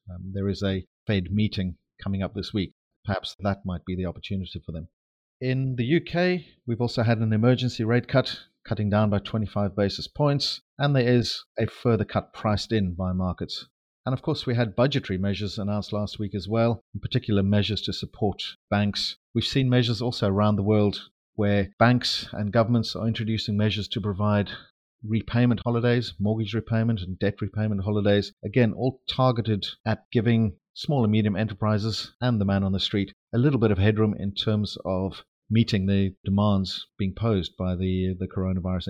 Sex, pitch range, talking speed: male, 100-120 Hz, 180 wpm